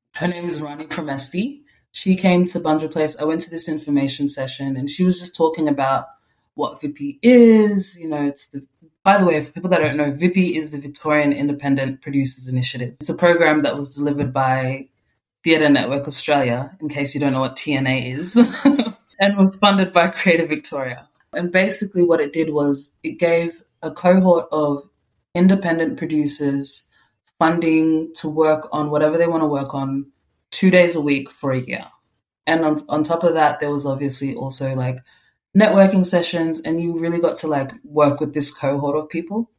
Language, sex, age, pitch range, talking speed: English, female, 20-39, 140-175 Hz, 185 wpm